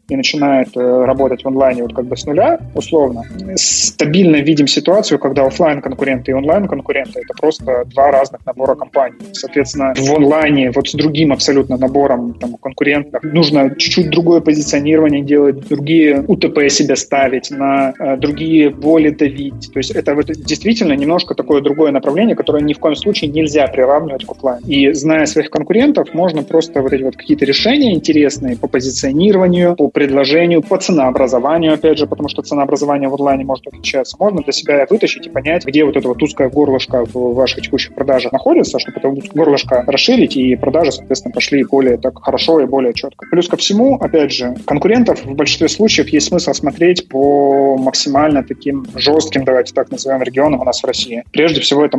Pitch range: 135-160 Hz